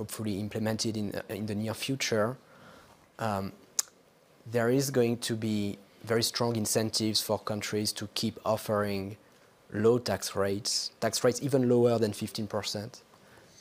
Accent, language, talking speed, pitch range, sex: French, English, 135 wpm, 105-120 Hz, male